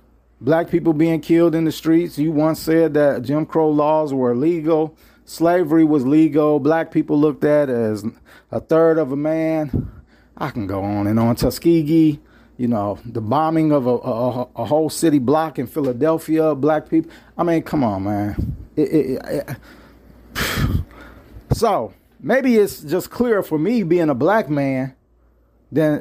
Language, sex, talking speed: English, male, 165 wpm